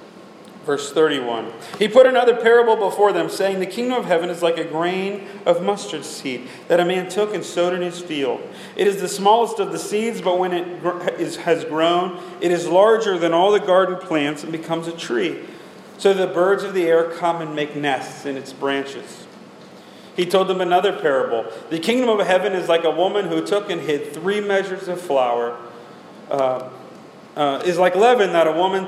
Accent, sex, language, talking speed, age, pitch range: American, male, English, 195 wpm, 40-59, 155-200 Hz